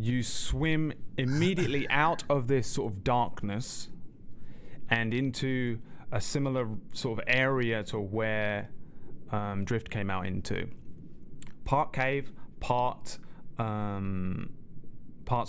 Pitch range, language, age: 105-125 Hz, English, 30-49